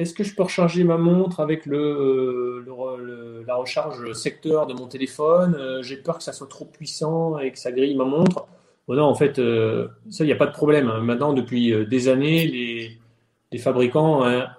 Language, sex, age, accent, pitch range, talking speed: French, male, 30-49, French, 120-155 Hz, 200 wpm